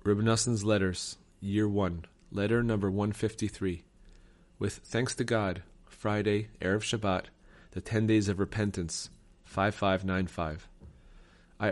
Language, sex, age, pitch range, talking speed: English, male, 30-49, 90-115 Hz, 135 wpm